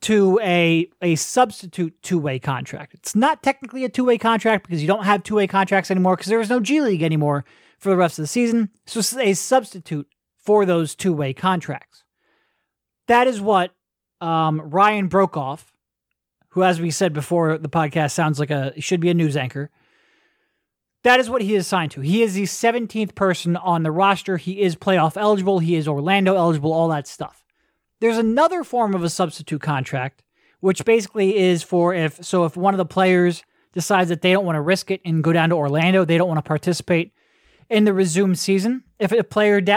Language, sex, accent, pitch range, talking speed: English, male, American, 165-210 Hz, 195 wpm